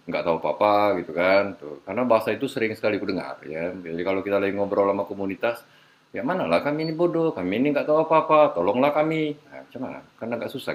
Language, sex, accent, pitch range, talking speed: Indonesian, male, native, 95-135 Hz, 205 wpm